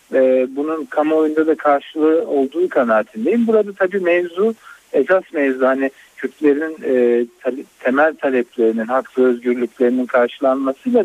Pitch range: 125-160 Hz